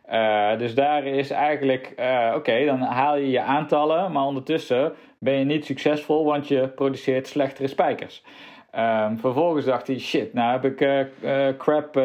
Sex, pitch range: male, 130-150 Hz